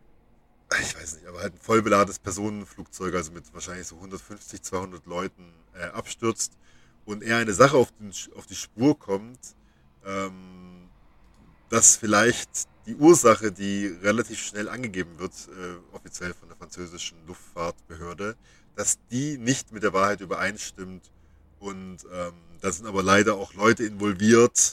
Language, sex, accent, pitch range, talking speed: German, male, German, 90-105 Hz, 145 wpm